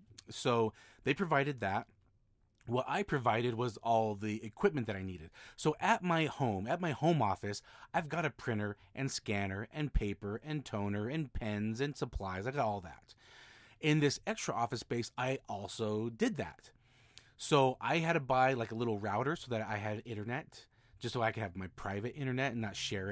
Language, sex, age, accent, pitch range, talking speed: English, male, 30-49, American, 100-130 Hz, 190 wpm